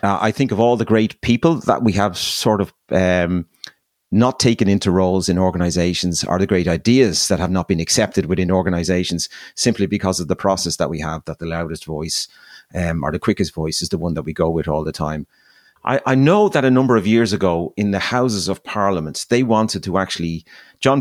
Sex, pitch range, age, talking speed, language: male, 90-110 Hz, 30-49, 220 wpm, English